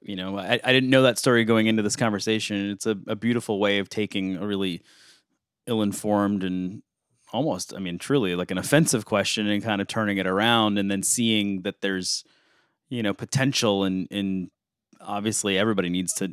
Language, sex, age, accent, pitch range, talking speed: English, male, 30-49, American, 95-115 Hz, 195 wpm